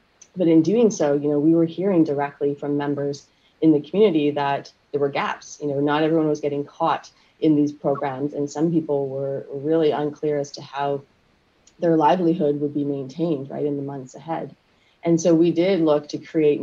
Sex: female